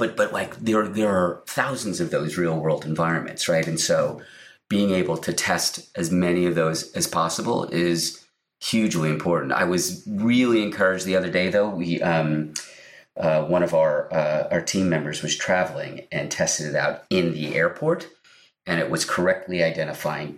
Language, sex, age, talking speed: English, male, 30-49, 175 wpm